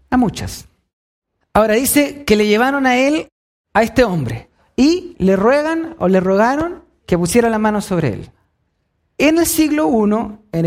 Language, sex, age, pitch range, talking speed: Spanish, male, 30-49, 195-285 Hz, 165 wpm